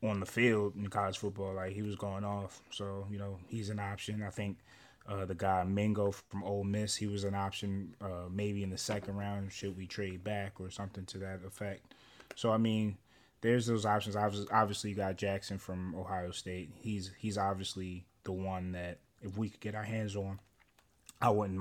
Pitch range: 95-105 Hz